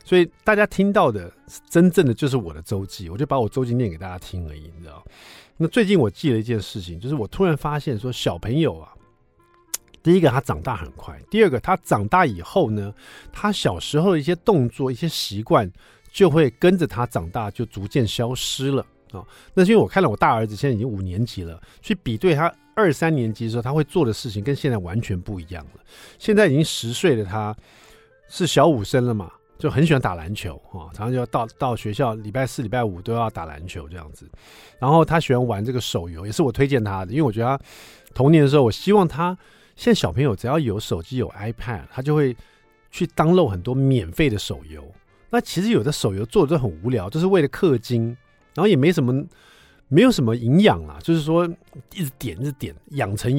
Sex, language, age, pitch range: male, Chinese, 50-69, 105-155 Hz